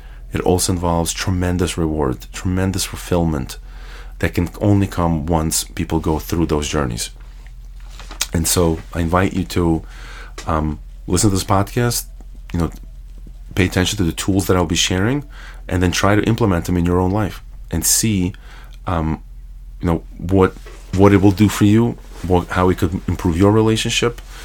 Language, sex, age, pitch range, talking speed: English, male, 30-49, 75-95 Hz, 165 wpm